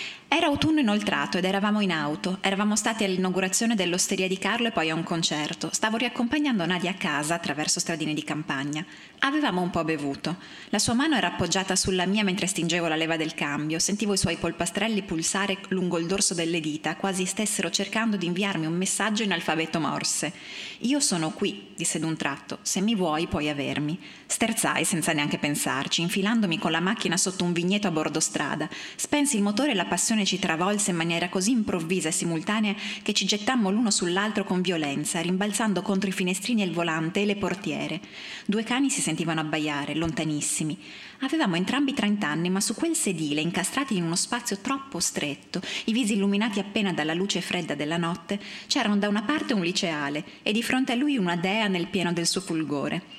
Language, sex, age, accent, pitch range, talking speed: Italian, female, 20-39, native, 165-210 Hz, 185 wpm